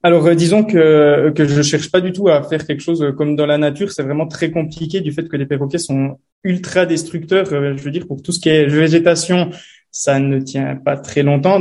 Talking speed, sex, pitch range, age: 230 wpm, male, 140-170 Hz, 20-39